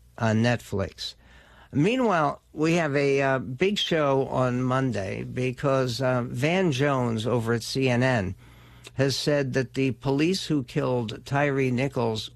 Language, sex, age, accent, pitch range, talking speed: English, male, 60-79, American, 120-140 Hz, 130 wpm